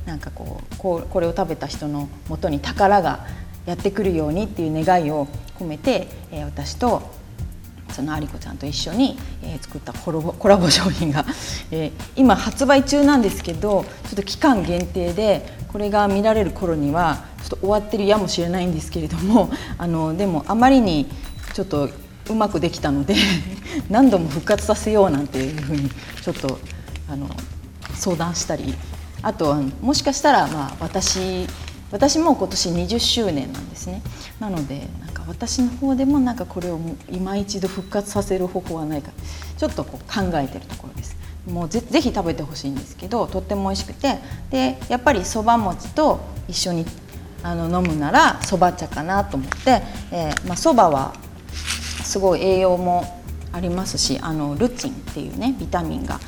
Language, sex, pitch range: Japanese, female, 130-205 Hz